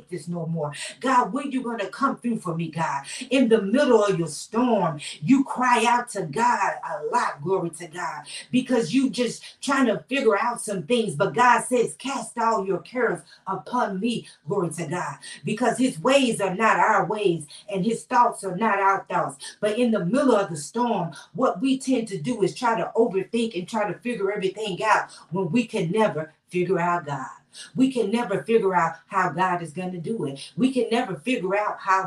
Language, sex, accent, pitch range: English, female, American, 175-240 Hz